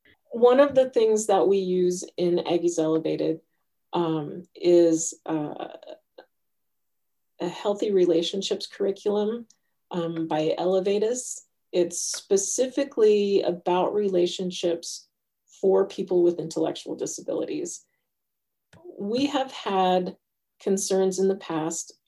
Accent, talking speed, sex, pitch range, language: American, 100 wpm, female, 175-200 Hz, English